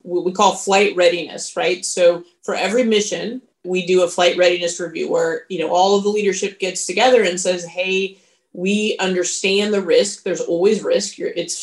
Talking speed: 180 wpm